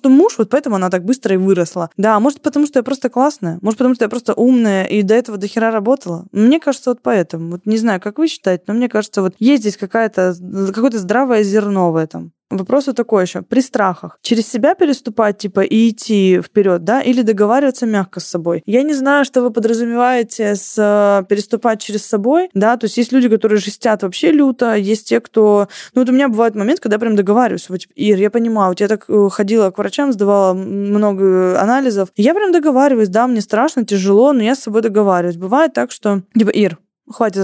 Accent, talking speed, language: native, 215 wpm, Russian